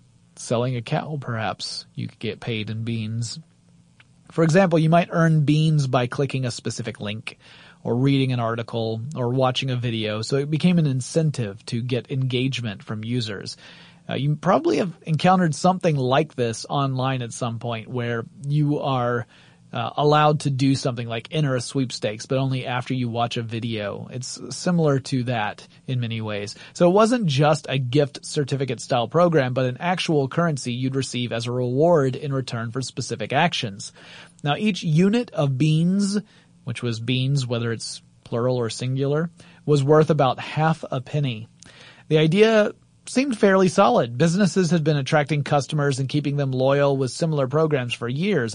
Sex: male